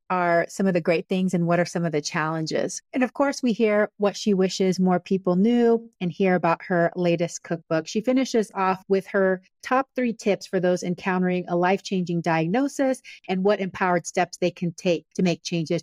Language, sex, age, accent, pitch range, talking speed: English, female, 30-49, American, 175-215 Hz, 205 wpm